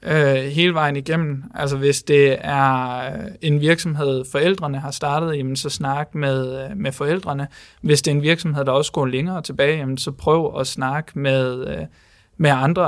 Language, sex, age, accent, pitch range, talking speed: Danish, male, 20-39, native, 135-160 Hz, 170 wpm